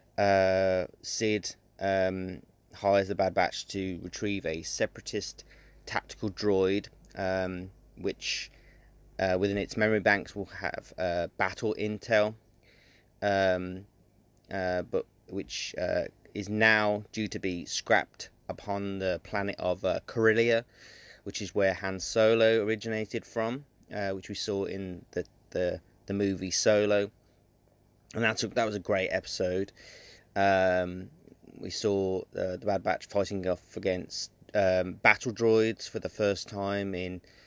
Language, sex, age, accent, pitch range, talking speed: English, male, 20-39, British, 95-105 Hz, 135 wpm